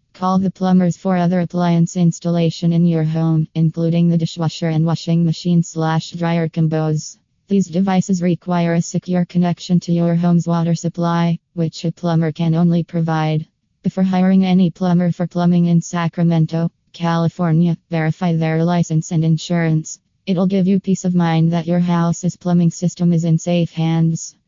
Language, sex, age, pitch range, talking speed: English, female, 20-39, 165-175 Hz, 160 wpm